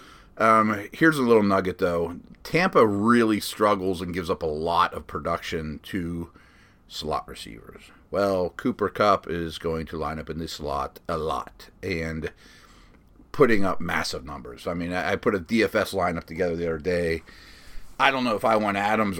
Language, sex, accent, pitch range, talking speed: English, male, American, 90-110 Hz, 170 wpm